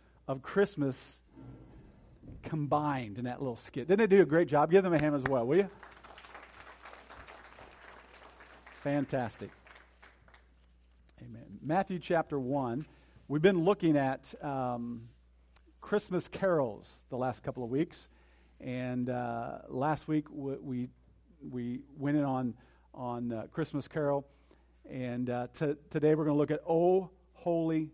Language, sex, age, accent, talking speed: English, male, 50-69, American, 135 wpm